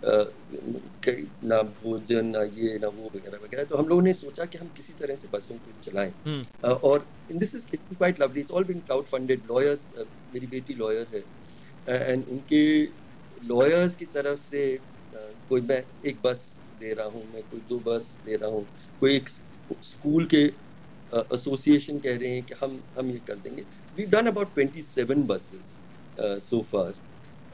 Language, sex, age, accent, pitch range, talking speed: Hindi, male, 50-69, native, 115-160 Hz, 150 wpm